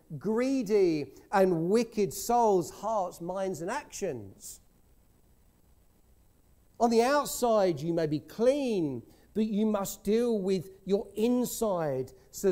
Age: 50-69